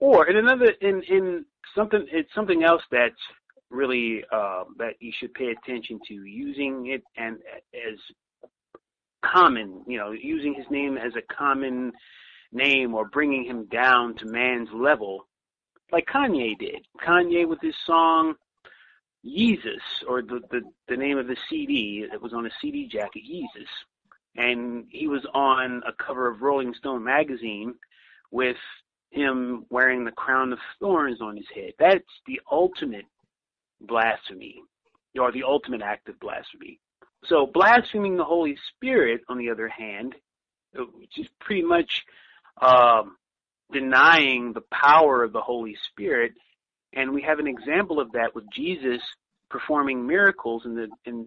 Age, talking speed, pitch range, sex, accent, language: 30-49, 145 wpm, 120-175 Hz, male, American, English